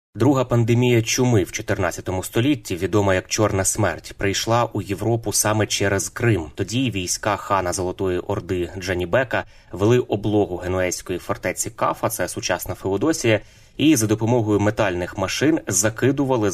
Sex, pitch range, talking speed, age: male, 95-115 Hz, 130 wpm, 20-39